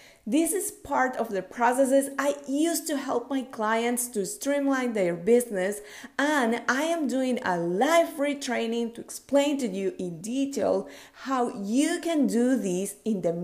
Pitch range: 210-275 Hz